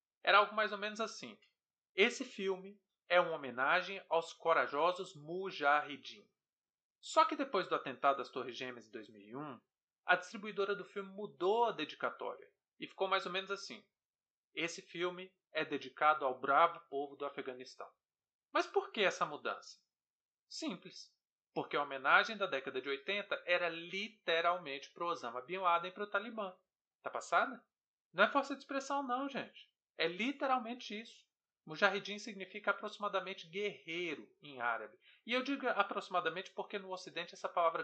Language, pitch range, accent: Portuguese, 165-210 Hz, Brazilian